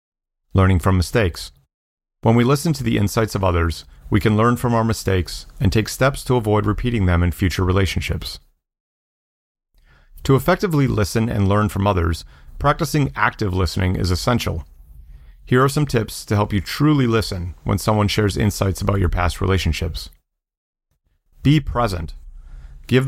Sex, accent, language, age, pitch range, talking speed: male, American, English, 40-59, 85-115 Hz, 155 wpm